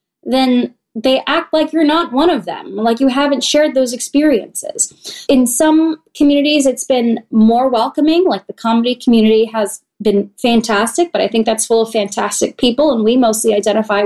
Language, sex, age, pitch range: English, female, 20-39, 205-265 Hz